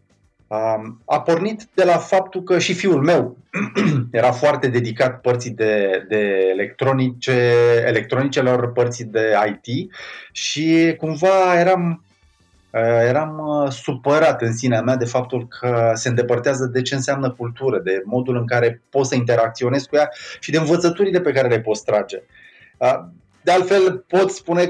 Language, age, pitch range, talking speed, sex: Romanian, 30-49, 120-155 Hz, 140 wpm, male